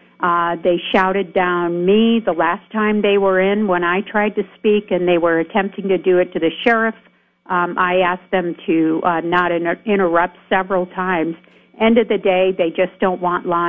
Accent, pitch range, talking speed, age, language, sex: American, 175-205 Hz, 200 wpm, 50-69, English, female